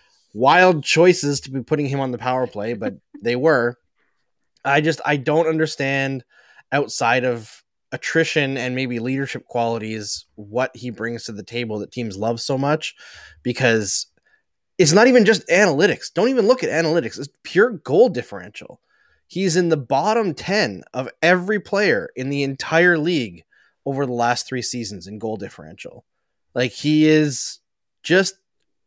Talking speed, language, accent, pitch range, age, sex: 155 wpm, English, American, 125-190 Hz, 20-39, male